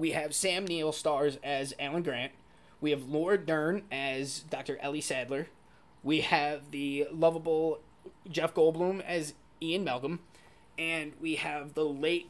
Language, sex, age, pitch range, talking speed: English, male, 20-39, 145-175 Hz, 145 wpm